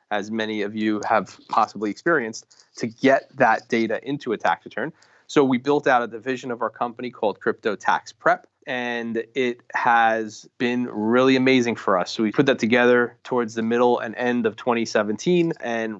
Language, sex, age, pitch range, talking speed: English, male, 30-49, 110-125 Hz, 185 wpm